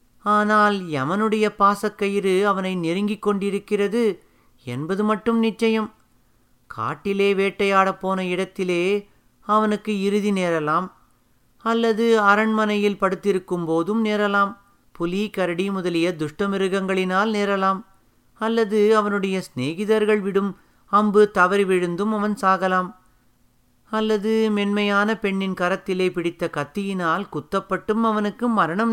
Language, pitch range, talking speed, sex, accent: Tamil, 170-210 Hz, 95 wpm, male, native